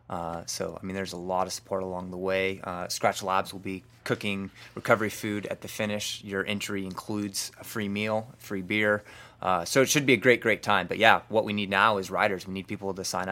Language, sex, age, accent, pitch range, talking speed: English, male, 20-39, American, 95-110 Hz, 240 wpm